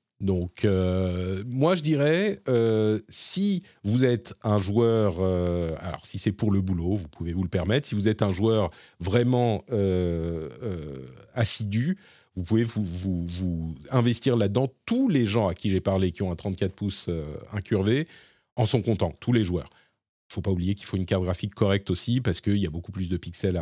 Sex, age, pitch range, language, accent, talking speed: male, 40-59, 90-120 Hz, French, French, 200 wpm